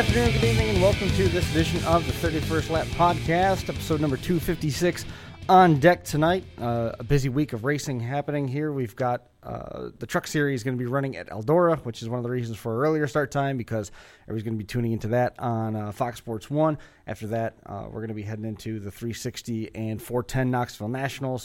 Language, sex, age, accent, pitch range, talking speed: English, male, 30-49, American, 115-145 Hz, 220 wpm